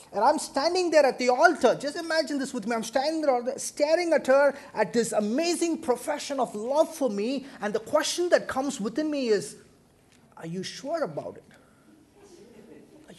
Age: 30-49